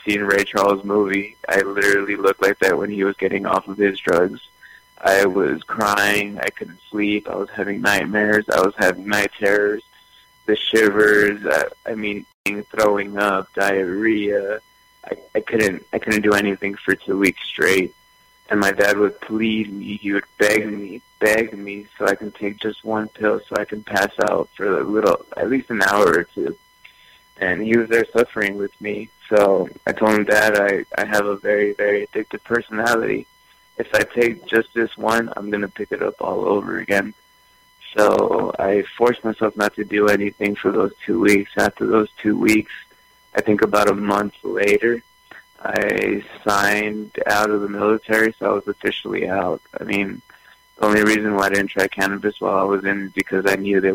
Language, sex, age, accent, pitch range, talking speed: English, male, 20-39, American, 100-110 Hz, 190 wpm